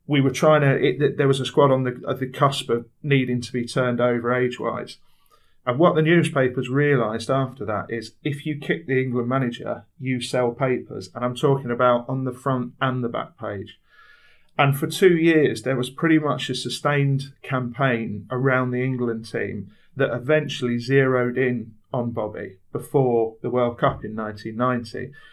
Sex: male